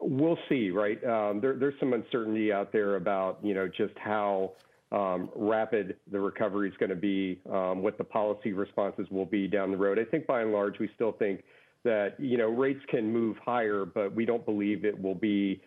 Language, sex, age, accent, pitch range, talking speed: English, male, 50-69, American, 95-120 Hz, 205 wpm